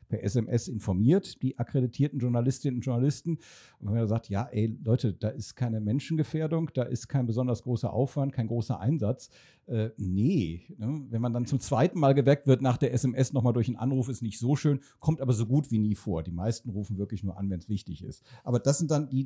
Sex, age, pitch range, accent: male, 50-69, 120-155 Hz, German